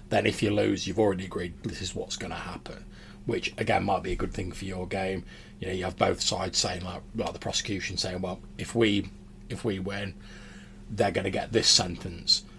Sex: male